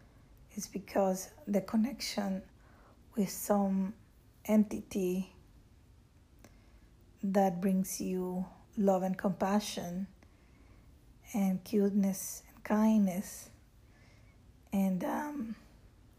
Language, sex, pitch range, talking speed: English, female, 185-205 Hz, 70 wpm